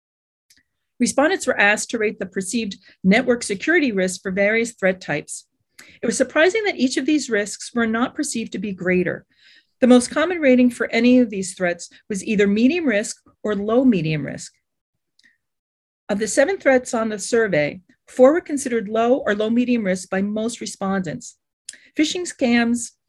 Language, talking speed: English, 170 wpm